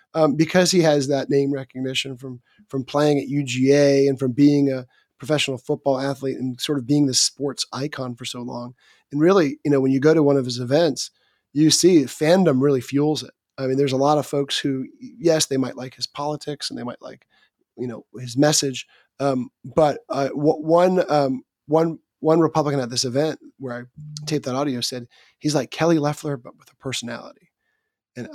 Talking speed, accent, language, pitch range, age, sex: 195 wpm, American, English, 135-165 Hz, 30-49, male